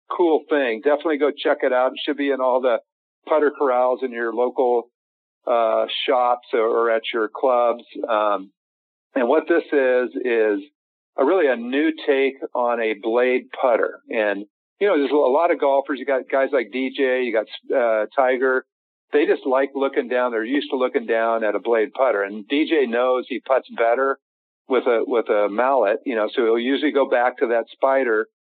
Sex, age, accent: male, 50-69, American